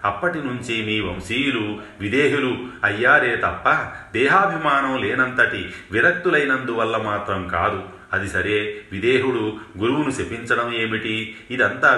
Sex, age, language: male, 40-59, Telugu